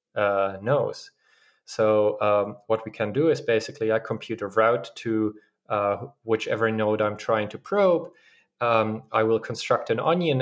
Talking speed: 160 wpm